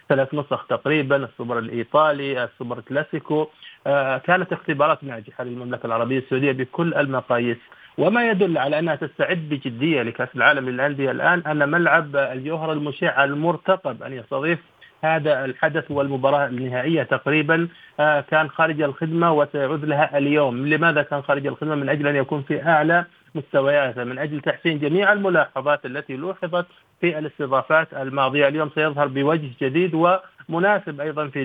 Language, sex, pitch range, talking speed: Arabic, male, 135-160 Hz, 140 wpm